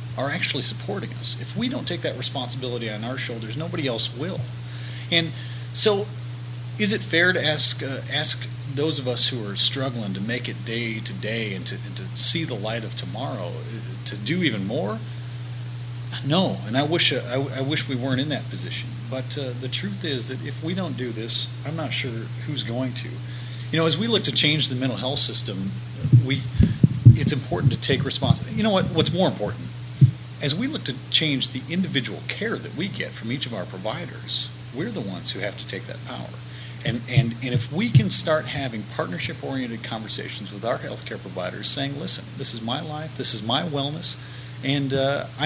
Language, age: English, 40-59